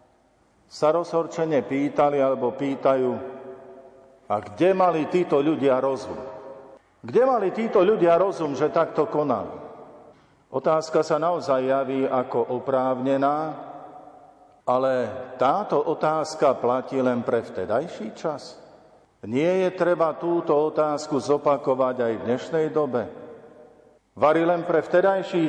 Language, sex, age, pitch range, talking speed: Slovak, male, 50-69, 130-160 Hz, 110 wpm